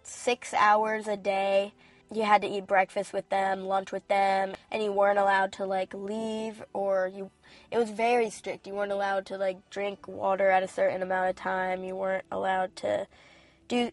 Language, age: English, 10-29